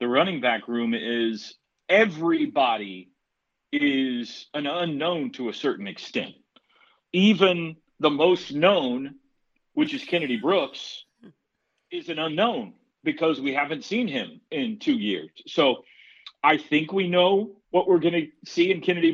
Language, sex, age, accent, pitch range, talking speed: English, male, 40-59, American, 120-200 Hz, 140 wpm